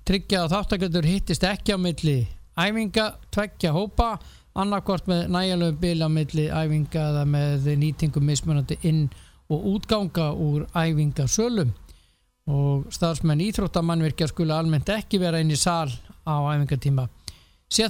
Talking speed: 135 wpm